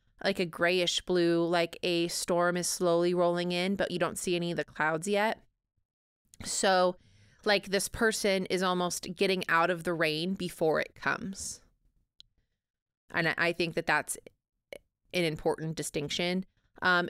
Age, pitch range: 20-39, 165-195 Hz